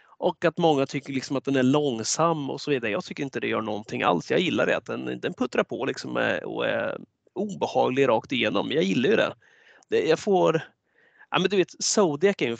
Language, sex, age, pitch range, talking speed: Swedish, male, 30-49, 130-185 Hz, 215 wpm